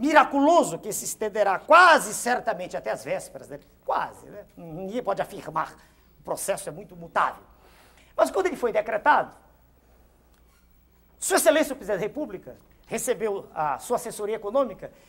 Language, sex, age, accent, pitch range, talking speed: Portuguese, male, 50-69, Brazilian, 200-280 Hz, 145 wpm